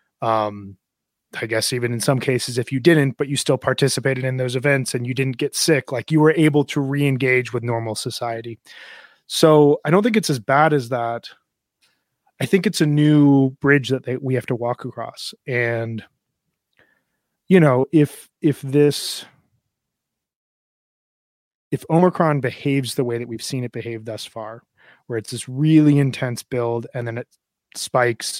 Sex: male